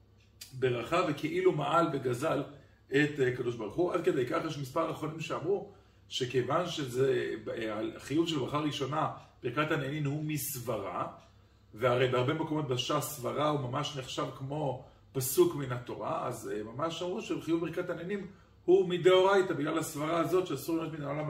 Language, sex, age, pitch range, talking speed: Hebrew, male, 40-59, 125-165 Hz, 145 wpm